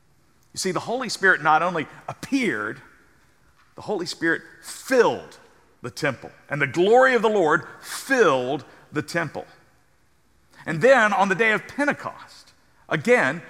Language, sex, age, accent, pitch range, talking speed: English, male, 50-69, American, 130-175 Hz, 140 wpm